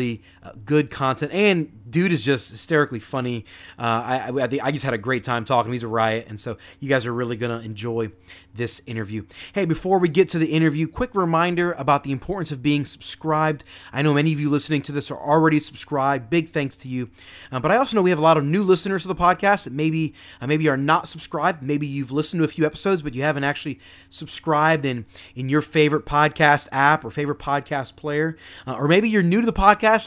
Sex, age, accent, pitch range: male, 30-49, American, 130-165 Hz